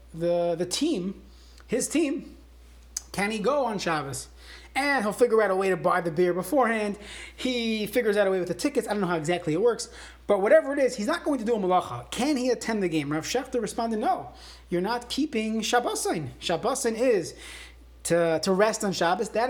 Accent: American